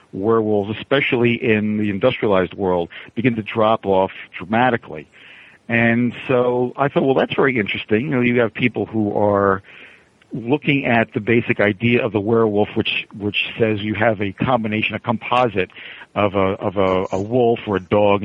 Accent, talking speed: American, 170 wpm